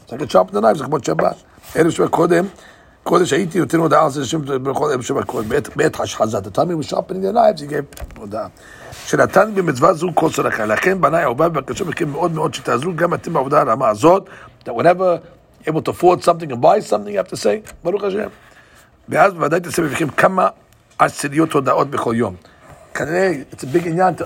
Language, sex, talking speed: English, male, 100 wpm